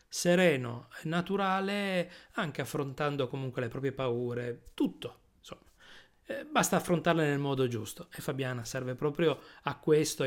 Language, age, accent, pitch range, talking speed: Italian, 30-49, native, 125-160 Hz, 135 wpm